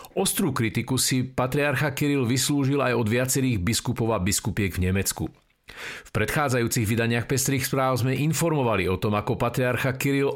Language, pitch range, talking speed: Slovak, 110-140 Hz, 150 wpm